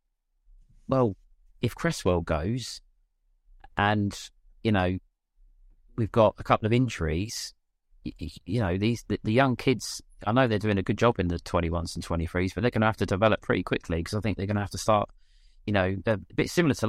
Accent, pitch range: British, 90-110 Hz